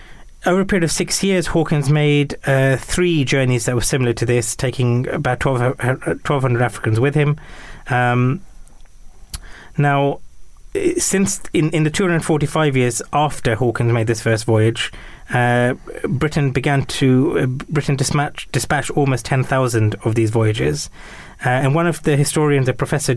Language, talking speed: English, 145 wpm